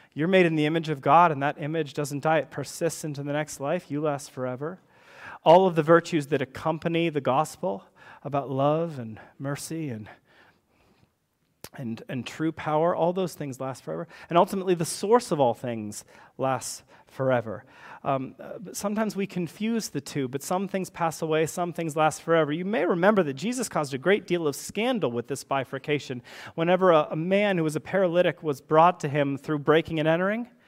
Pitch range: 135-175 Hz